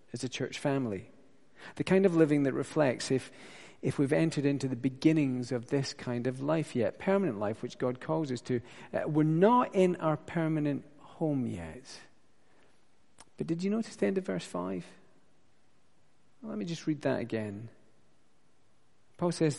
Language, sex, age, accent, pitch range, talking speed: English, male, 40-59, British, 125-155 Hz, 170 wpm